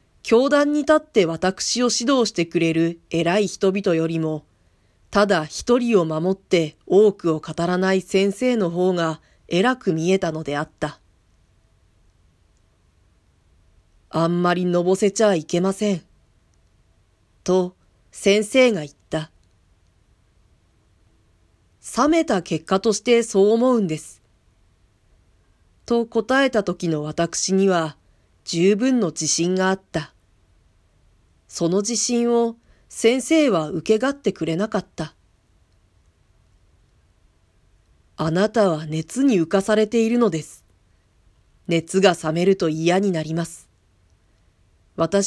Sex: female